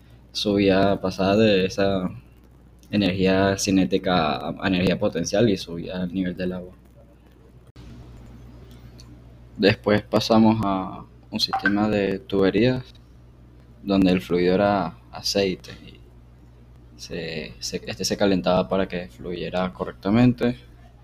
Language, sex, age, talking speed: Spanish, male, 20-39, 105 wpm